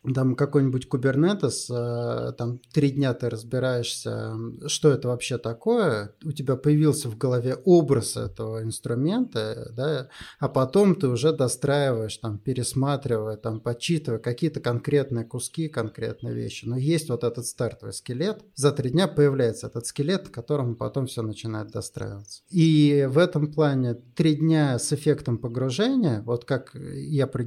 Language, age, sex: Russian, 20-39, male